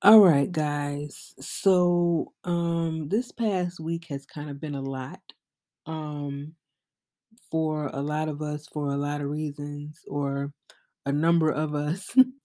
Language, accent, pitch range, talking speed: English, American, 140-165 Hz, 145 wpm